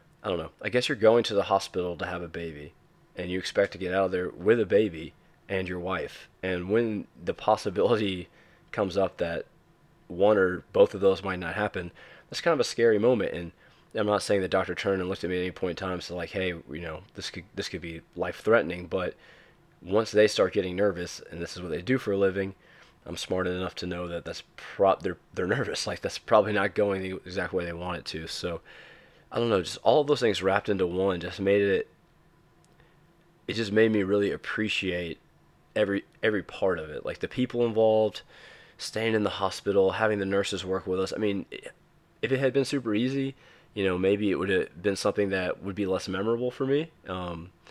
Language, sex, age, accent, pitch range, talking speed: English, male, 20-39, American, 90-105 Hz, 225 wpm